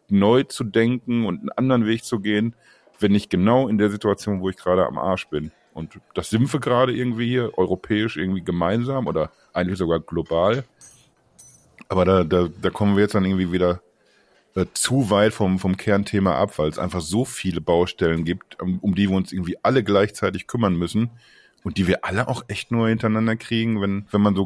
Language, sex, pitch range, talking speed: German, male, 95-115 Hz, 200 wpm